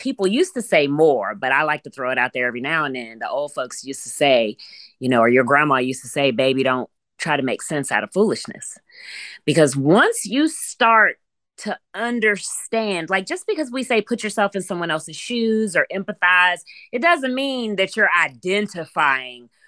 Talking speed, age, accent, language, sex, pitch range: 200 wpm, 20-39, American, English, female, 135-225 Hz